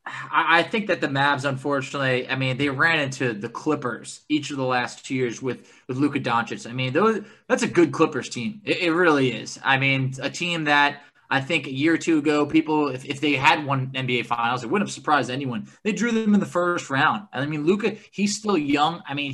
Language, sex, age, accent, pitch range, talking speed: English, male, 20-39, American, 135-170 Hz, 235 wpm